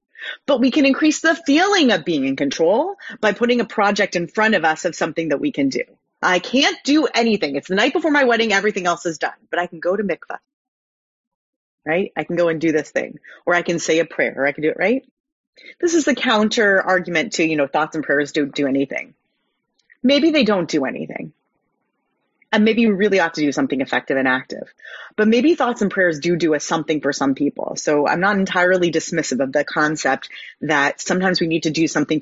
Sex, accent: female, American